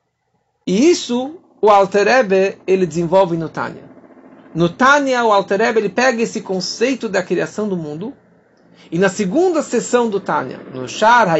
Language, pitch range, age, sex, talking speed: Portuguese, 170-230 Hz, 50-69, male, 145 wpm